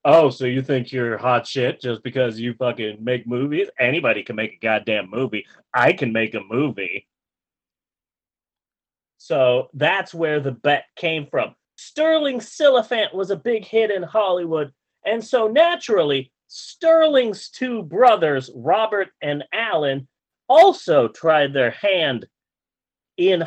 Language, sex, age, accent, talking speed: English, male, 30-49, American, 135 wpm